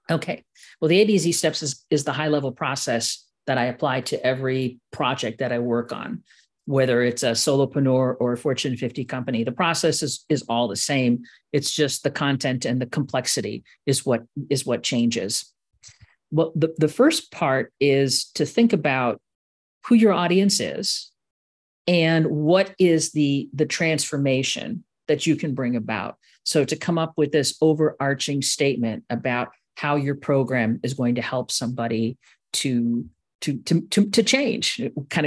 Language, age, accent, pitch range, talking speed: English, 50-69, American, 125-160 Hz, 165 wpm